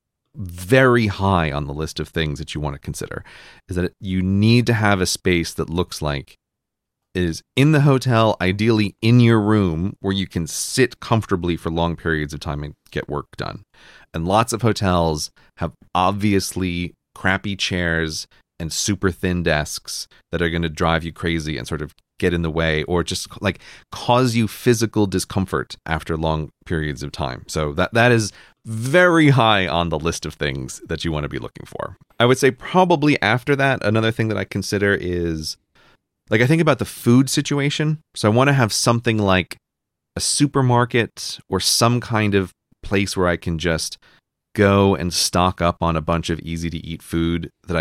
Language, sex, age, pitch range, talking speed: English, male, 30-49, 80-115 Hz, 190 wpm